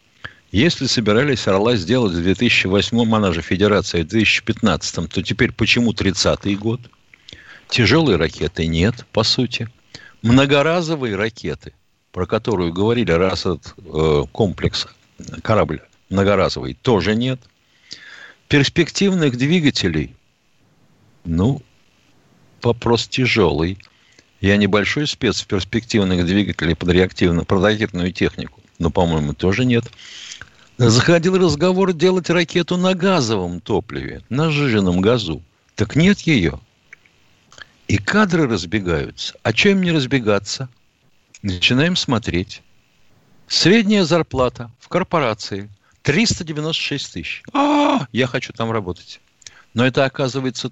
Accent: native